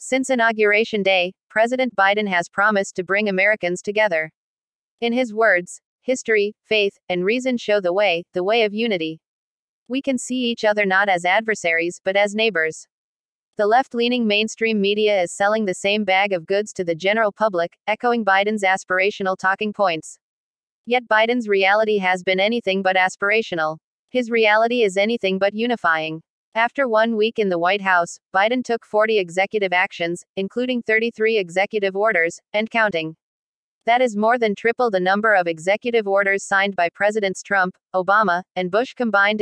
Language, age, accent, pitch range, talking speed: English, 40-59, American, 185-220 Hz, 160 wpm